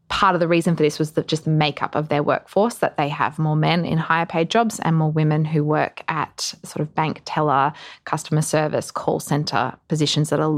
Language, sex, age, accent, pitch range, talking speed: English, female, 20-39, Australian, 155-180 Hz, 215 wpm